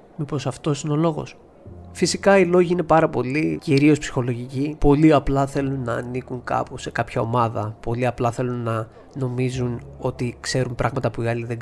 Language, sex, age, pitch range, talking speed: Greek, male, 20-39, 125-145 Hz, 175 wpm